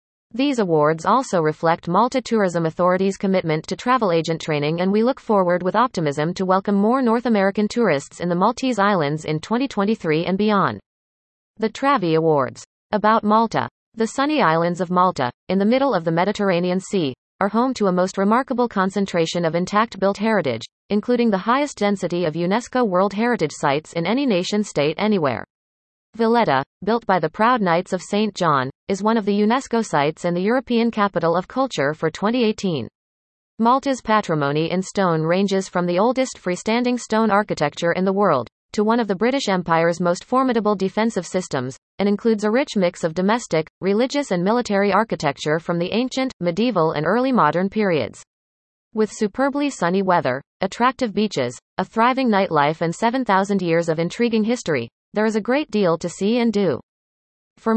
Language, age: English, 30-49